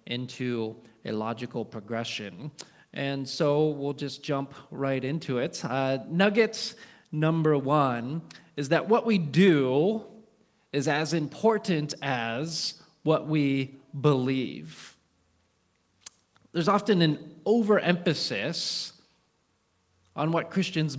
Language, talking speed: English, 100 wpm